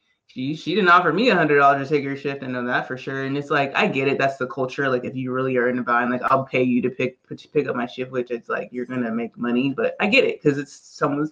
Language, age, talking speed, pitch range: English, 20-39, 290 wpm, 130-160 Hz